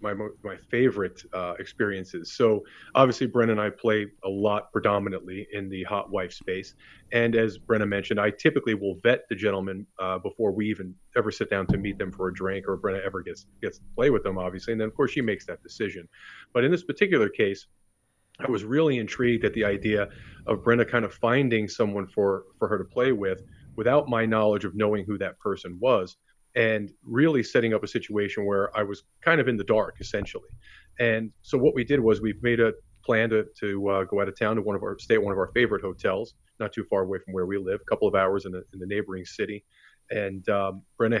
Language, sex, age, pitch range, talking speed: English, male, 40-59, 100-115 Hz, 225 wpm